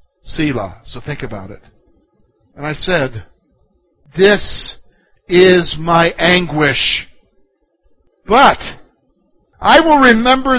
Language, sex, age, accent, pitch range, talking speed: English, male, 50-69, American, 135-185 Hz, 90 wpm